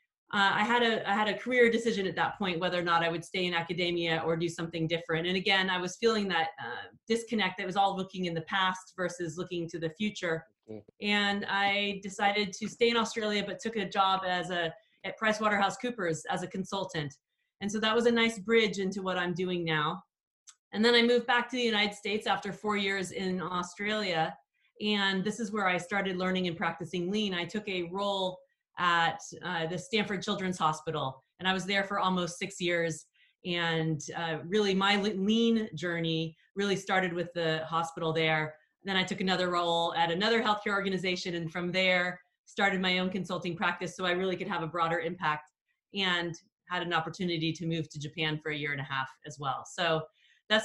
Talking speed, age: 205 wpm, 30-49